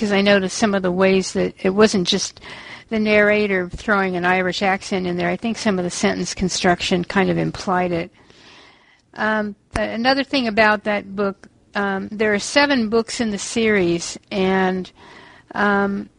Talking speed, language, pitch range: 175 wpm, English, 185-210 Hz